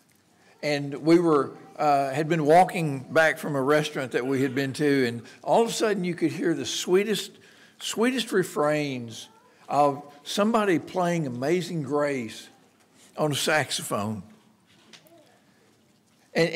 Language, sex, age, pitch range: English, male, 60-79, 135-175 Hz